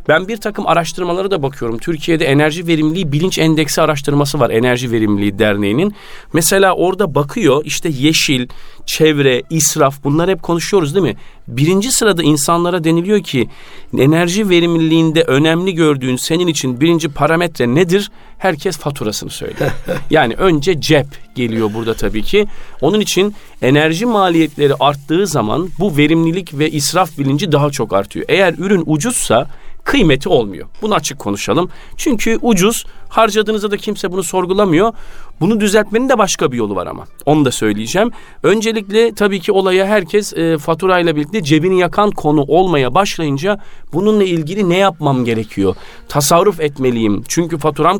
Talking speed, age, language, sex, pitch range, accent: 145 wpm, 40-59, Turkish, male, 140-195 Hz, native